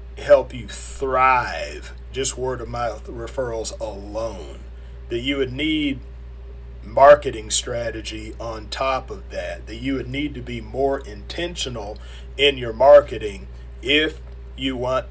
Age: 40-59